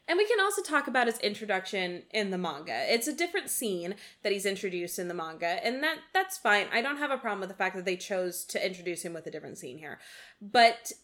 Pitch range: 190-260 Hz